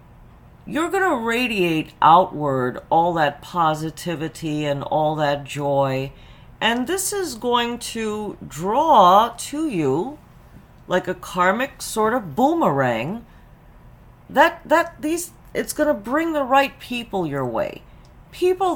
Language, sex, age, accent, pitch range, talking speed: English, female, 50-69, American, 175-255 Hz, 125 wpm